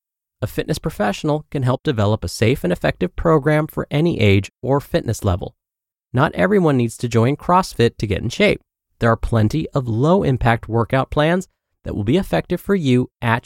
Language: English